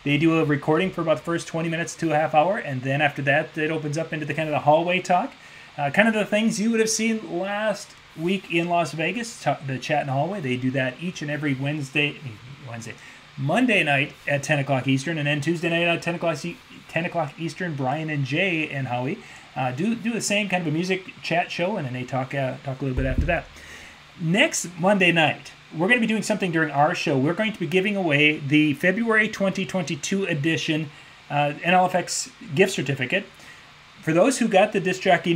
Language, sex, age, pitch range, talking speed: English, male, 30-49, 145-180 Hz, 220 wpm